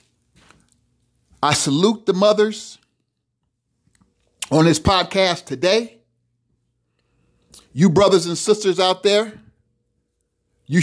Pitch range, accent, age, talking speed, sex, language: 130-215 Hz, American, 50-69, 85 wpm, male, English